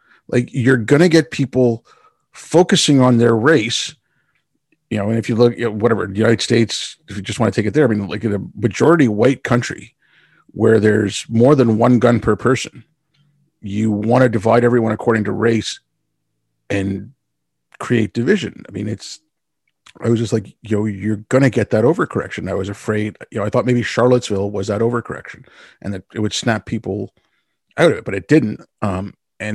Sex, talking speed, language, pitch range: male, 195 wpm, English, 105-125 Hz